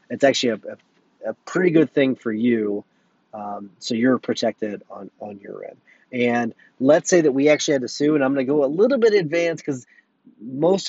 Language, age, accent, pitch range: English, 30-49, American, 115-150 Hz